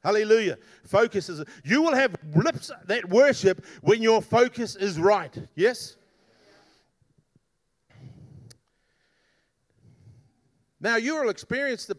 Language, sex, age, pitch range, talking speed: English, male, 50-69, 145-225 Hz, 100 wpm